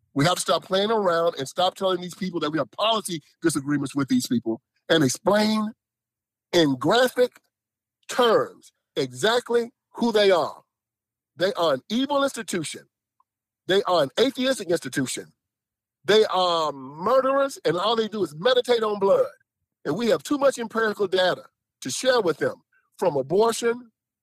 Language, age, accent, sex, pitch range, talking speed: English, 50-69, American, male, 150-220 Hz, 155 wpm